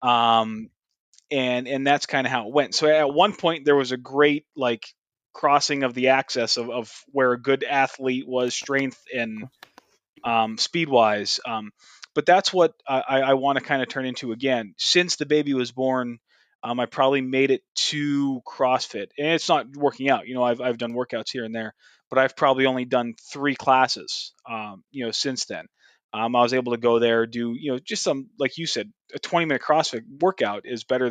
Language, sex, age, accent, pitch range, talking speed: English, male, 20-39, American, 120-145 Hz, 205 wpm